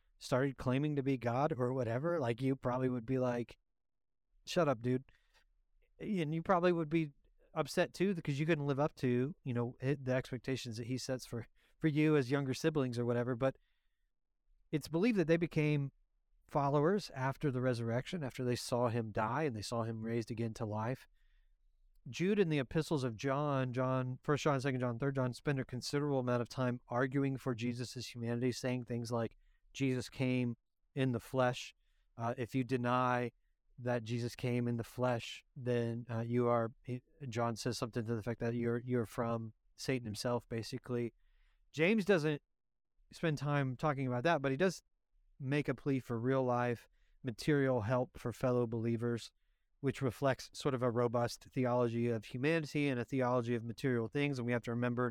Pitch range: 120-145 Hz